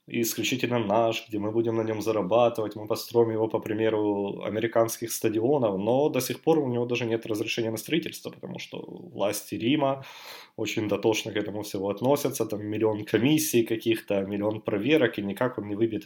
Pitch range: 105-115 Hz